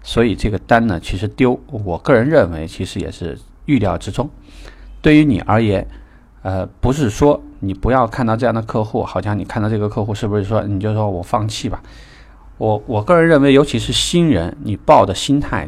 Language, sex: Chinese, male